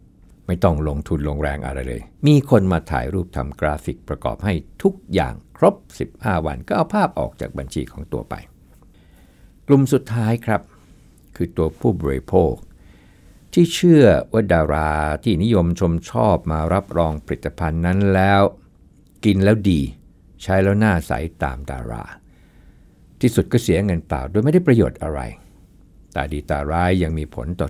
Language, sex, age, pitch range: Thai, male, 60-79, 75-105 Hz